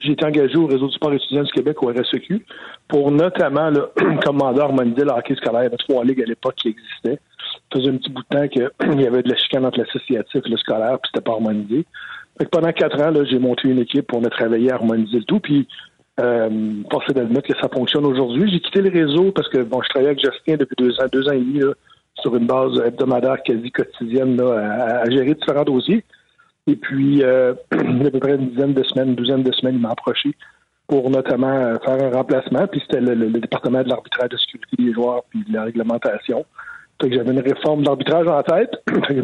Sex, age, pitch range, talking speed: male, 60-79, 120-145 Hz, 235 wpm